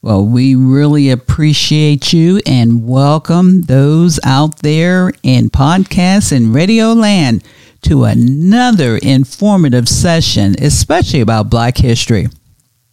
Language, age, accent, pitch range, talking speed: English, 50-69, American, 120-150 Hz, 105 wpm